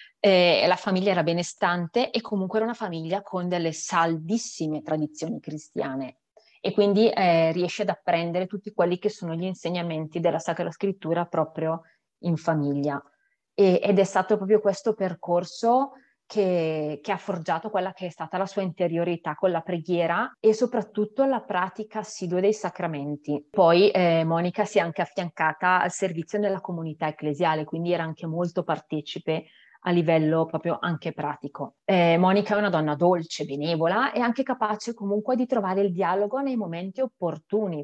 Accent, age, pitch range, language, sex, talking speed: native, 30-49, 165-205 Hz, Italian, female, 160 wpm